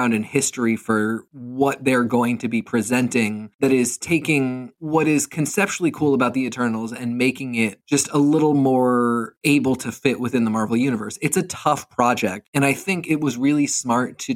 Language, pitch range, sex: English, 115-140 Hz, male